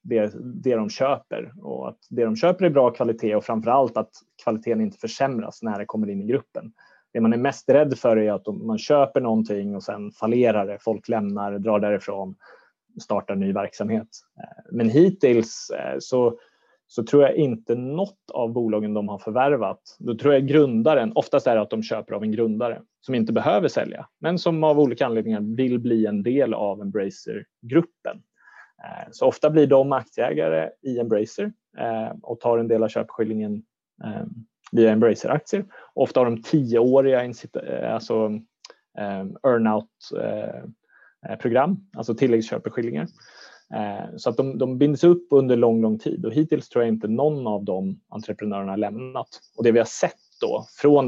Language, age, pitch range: Swedish, 20-39, 110-140 Hz